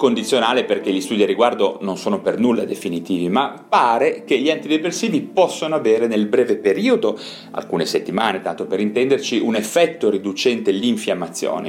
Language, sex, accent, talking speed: Italian, male, native, 155 wpm